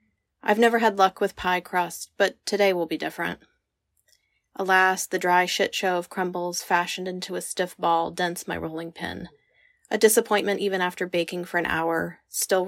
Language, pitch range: English, 170-205 Hz